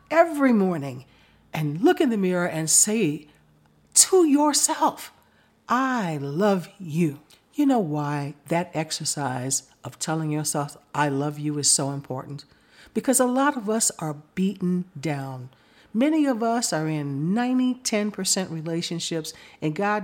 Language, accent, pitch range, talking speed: English, American, 160-250 Hz, 140 wpm